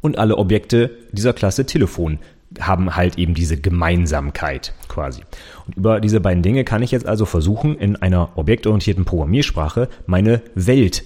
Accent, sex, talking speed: German, male, 145 wpm